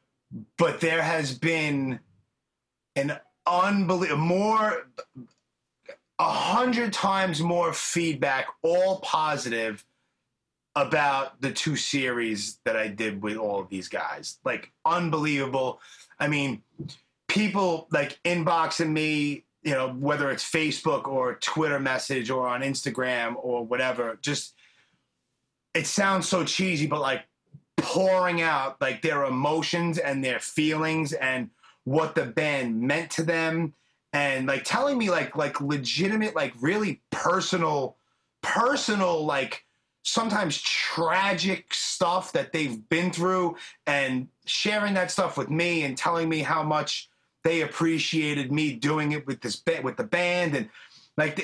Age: 30-49